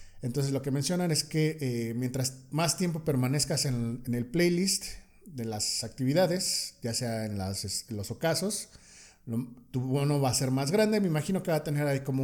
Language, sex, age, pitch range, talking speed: Spanish, male, 40-59, 120-160 Hz, 200 wpm